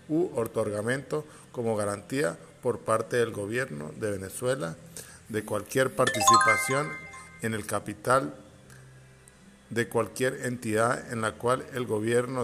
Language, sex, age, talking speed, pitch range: Spanish, male, 50-69, 115 wpm, 105-135 Hz